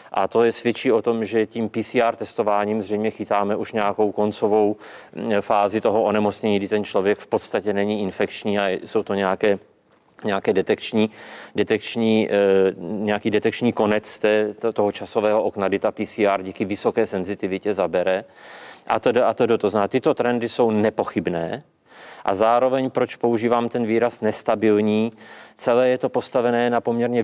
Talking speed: 150 wpm